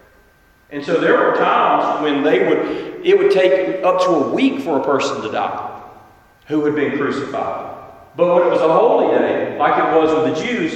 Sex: male